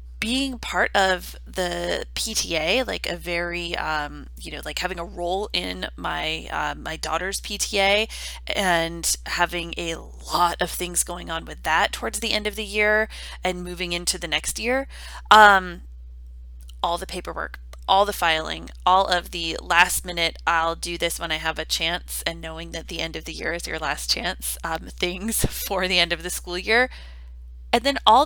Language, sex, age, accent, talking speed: English, female, 20-39, American, 185 wpm